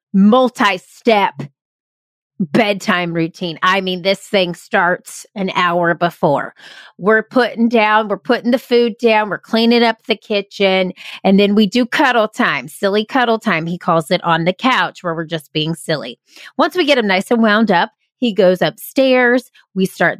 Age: 30-49